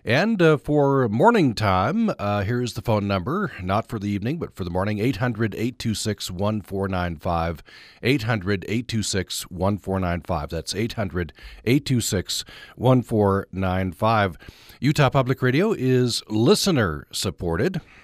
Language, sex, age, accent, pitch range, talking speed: English, male, 40-59, American, 90-120 Hz, 90 wpm